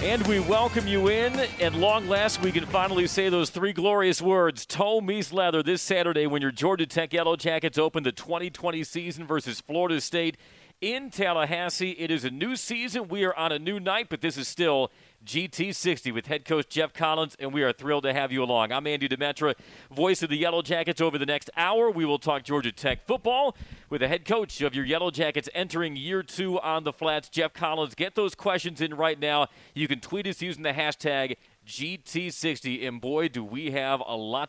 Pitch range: 135-175 Hz